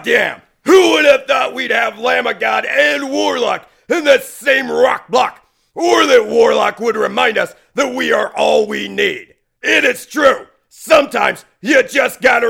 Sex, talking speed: male, 175 wpm